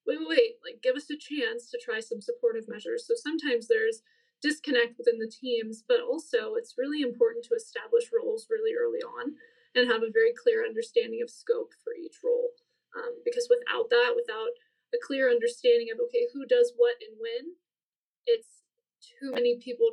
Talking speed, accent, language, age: 185 wpm, American, English, 20-39